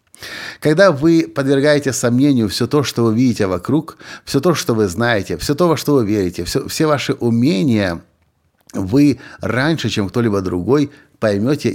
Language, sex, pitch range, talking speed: Russian, male, 100-135 Hz, 155 wpm